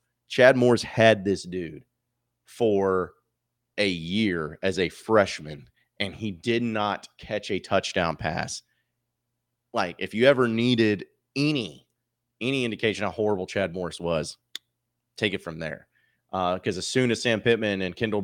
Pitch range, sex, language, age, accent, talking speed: 90-115 Hz, male, English, 30-49, American, 150 wpm